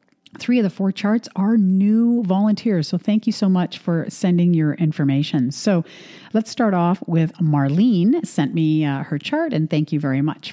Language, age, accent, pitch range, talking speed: English, 50-69, American, 155-200 Hz, 190 wpm